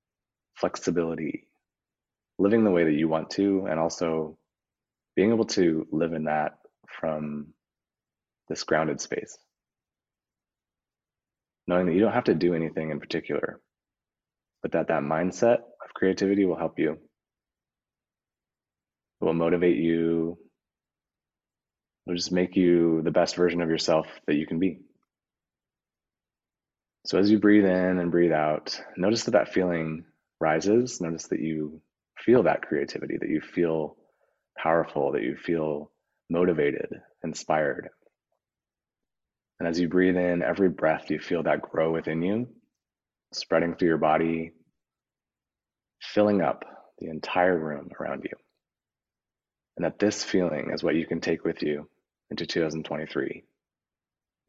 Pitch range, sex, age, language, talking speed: 80-90 Hz, male, 30-49, English, 135 wpm